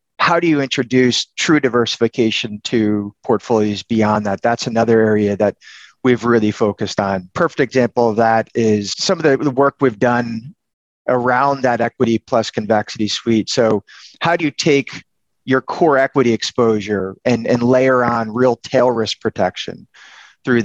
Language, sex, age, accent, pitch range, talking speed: English, male, 30-49, American, 110-130 Hz, 155 wpm